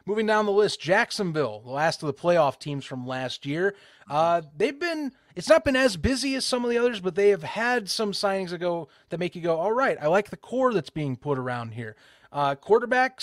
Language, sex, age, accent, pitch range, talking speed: English, male, 30-49, American, 130-190 Hz, 230 wpm